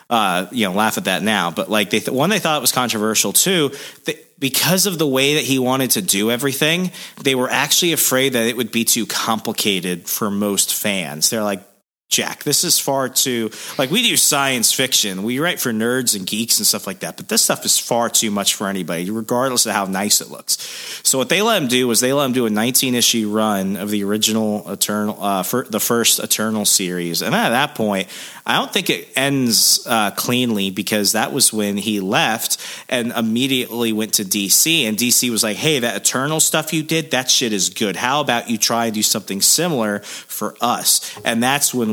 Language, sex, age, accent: English, male, 30-49, American